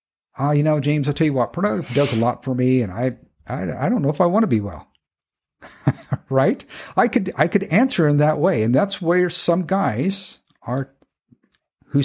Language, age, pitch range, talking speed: English, 50-69, 110-160 Hz, 215 wpm